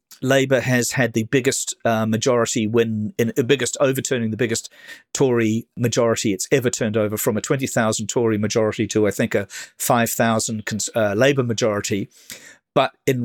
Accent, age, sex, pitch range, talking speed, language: British, 50-69, male, 110-125 Hz, 155 wpm, English